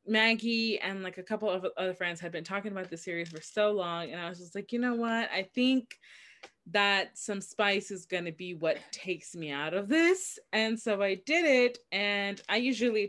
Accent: American